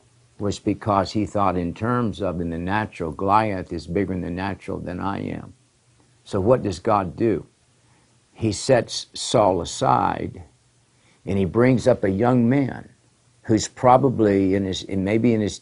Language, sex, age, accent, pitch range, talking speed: English, male, 60-79, American, 95-120 Hz, 160 wpm